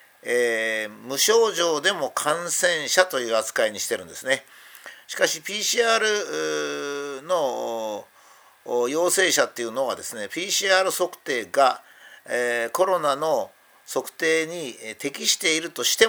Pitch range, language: 125-200 Hz, Japanese